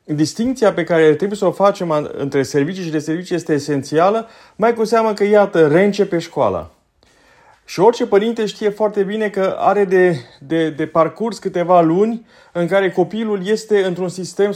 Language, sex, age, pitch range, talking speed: Romanian, male, 30-49, 160-210 Hz, 170 wpm